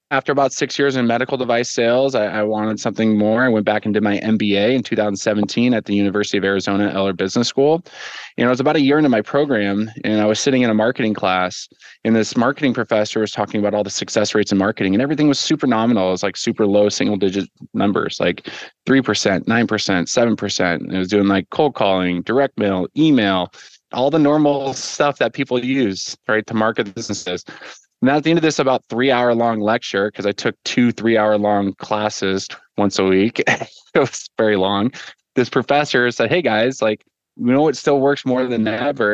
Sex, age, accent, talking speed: male, 20-39, American, 205 wpm